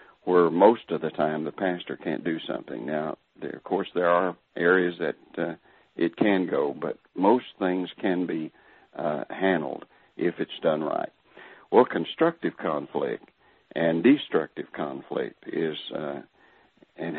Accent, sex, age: American, male, 60-79